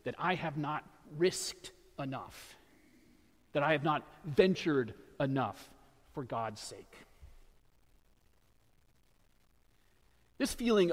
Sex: male